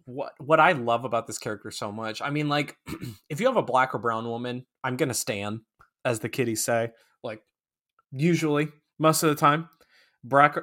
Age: 20-39